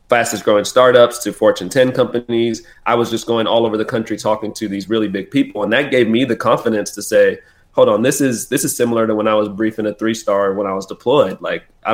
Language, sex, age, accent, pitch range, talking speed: English, male, 20-39, American, 105-120 Hz, 250 wpm